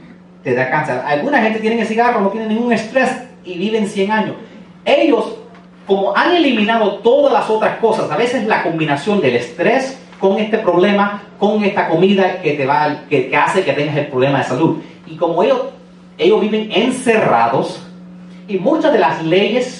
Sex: male